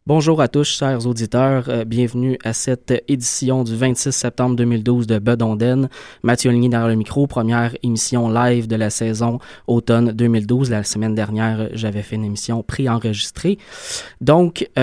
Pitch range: 110-130 Hz